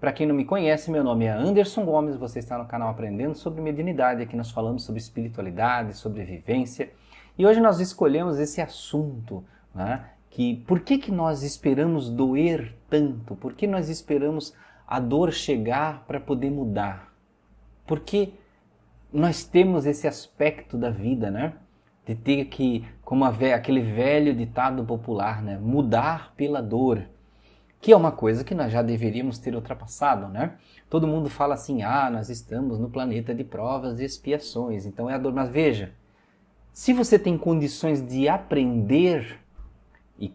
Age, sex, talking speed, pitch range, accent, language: 30-49, male, 160 wpm, 115-155 Hz, Brazilian, Portuguese